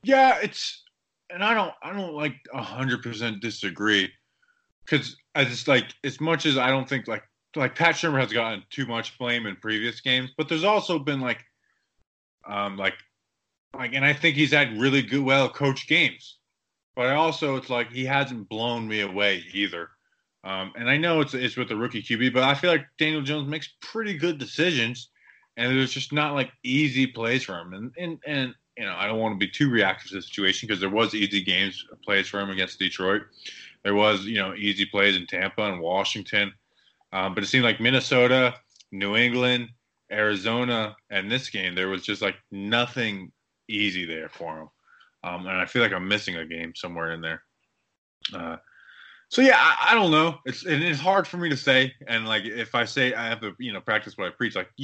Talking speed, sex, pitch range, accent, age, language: 205 wpm, male, 100-140 Hz, American, 20-39, English